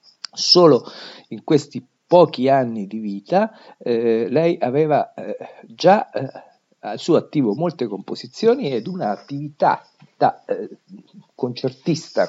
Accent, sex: native, male